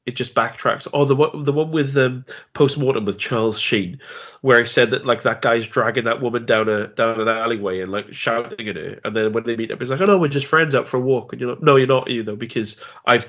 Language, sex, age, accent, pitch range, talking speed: English, male, 20-39, British, 115-170 Hz, 275 wpm